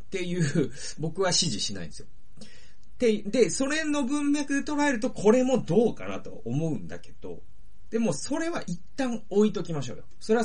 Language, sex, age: Japanese, male, 40-59